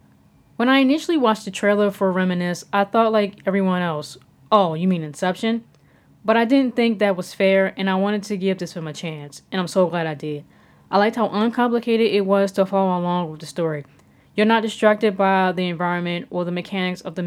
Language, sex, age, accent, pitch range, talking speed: English, female, 10-29, American, 170-200 Hz, 215 wpm